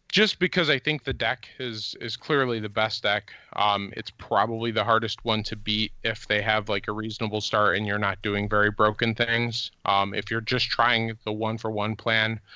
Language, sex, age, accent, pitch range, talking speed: English, male, 20-39, American, 100-115 Hz, 210 wpm